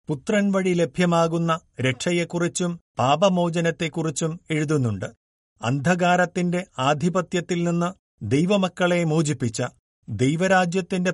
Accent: native